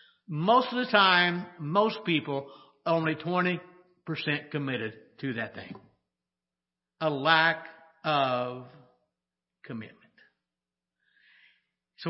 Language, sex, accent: English, male, American